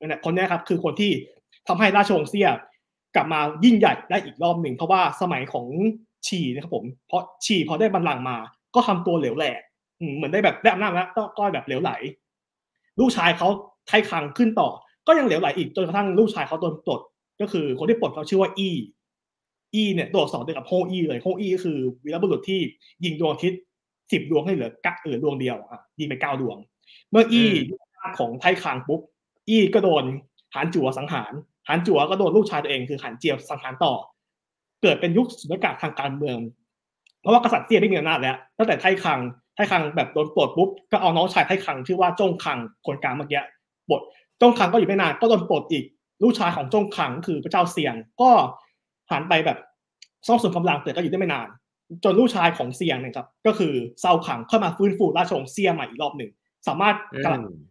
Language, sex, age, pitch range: English, male, 20-39, 155-215 Hz